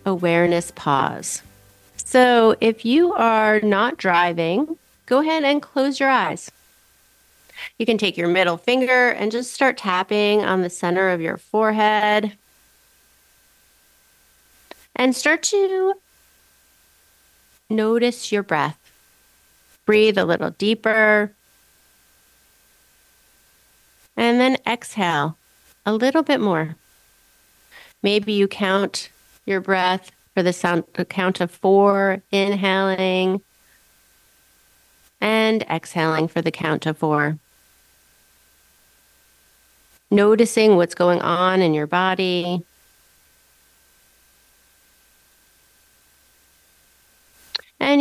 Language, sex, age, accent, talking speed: English, female, 40-59, American, 90 wpm